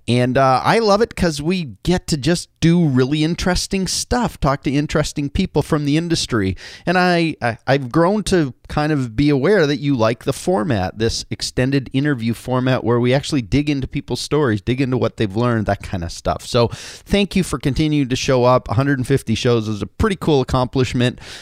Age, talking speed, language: 30-49, 200 wpm, English